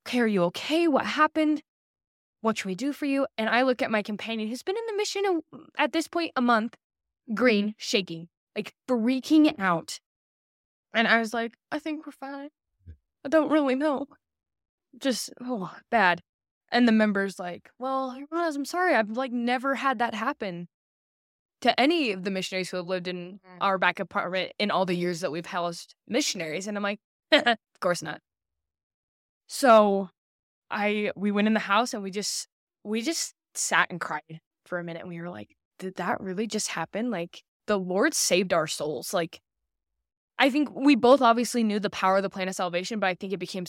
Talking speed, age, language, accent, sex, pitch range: 190 wpm, 10-29, English, American, female, 175-250 Hz